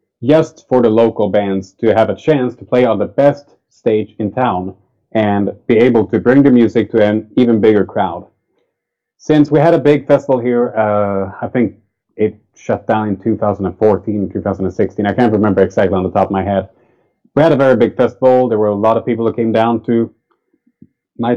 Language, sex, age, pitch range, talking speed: English, male, 30-49, 110-140 Hz, 200 wpm